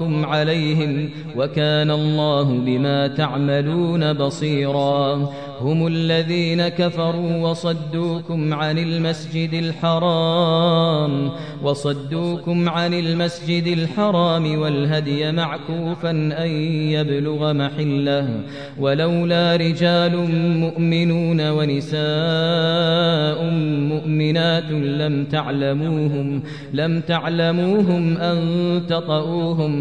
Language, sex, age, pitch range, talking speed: Arabic, male, 30-49, 150-165 Hz, 65 wpm